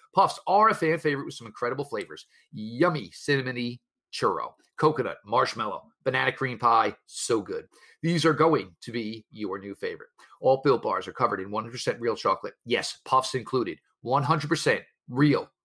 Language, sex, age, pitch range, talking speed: English, male, 40-59, 120-155 Hz, 155 wpm